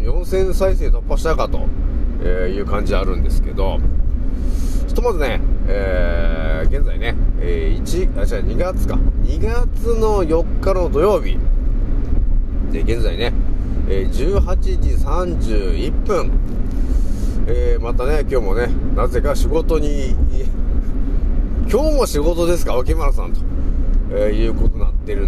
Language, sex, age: Japanese, male, 40-59